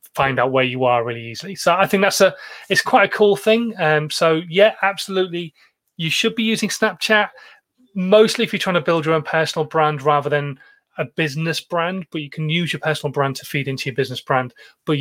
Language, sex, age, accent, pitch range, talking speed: English, male, 30-49, British, 150-205 Hz, 220 wpm